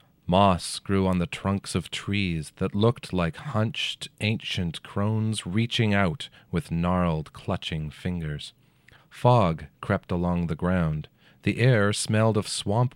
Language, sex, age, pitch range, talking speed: English, male, 30-49, 85-110 Hz, 135 wpm